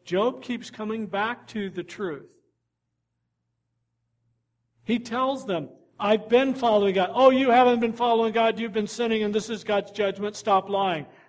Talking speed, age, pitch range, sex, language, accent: 160 wpm, 50-69, 190-255 Hz, male, English, American